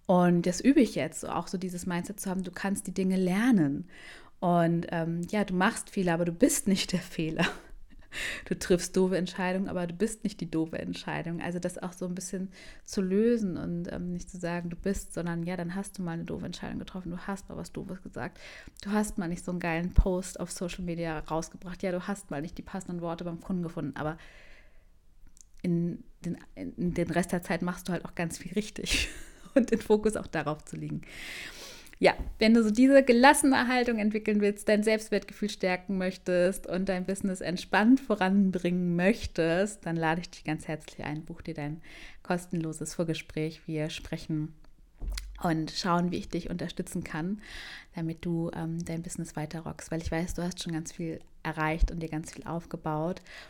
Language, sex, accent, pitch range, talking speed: German, female, German, 165-195 Hz, 195 wpm